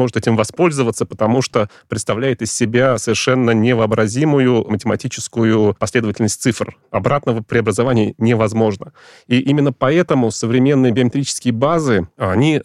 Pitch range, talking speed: 110-130 Hz, 110 wpm